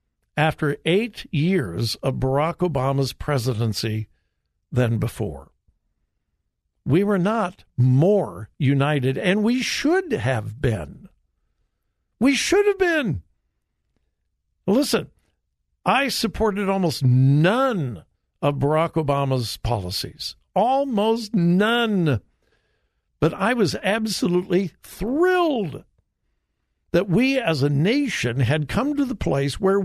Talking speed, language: 100 wpm, English